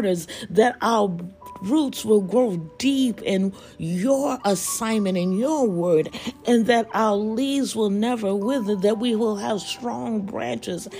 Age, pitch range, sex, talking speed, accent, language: 60-79, 195-255 Hz, female, 135 wpm, American, English